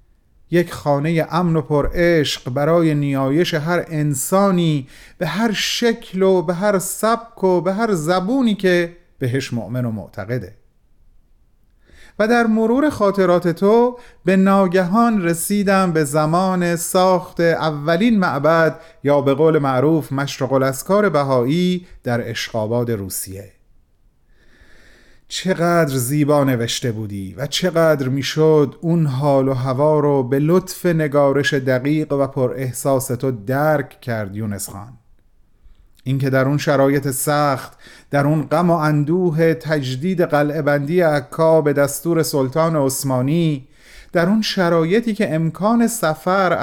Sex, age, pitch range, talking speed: male, 30-49, 135-180 Hz, 120 wpm